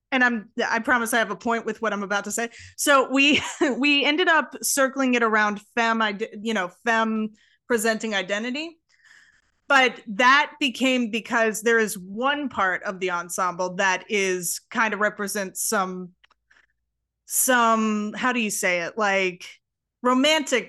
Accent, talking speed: American, 155 wpm